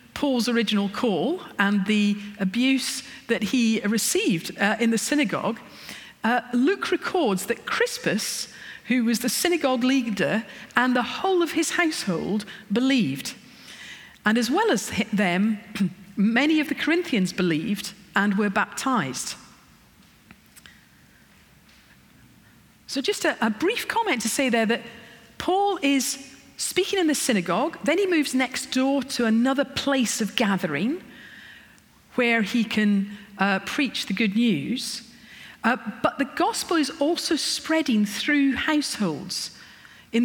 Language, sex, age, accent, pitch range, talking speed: English, female, 40-59, British, 215-280 Hz, 130 wpm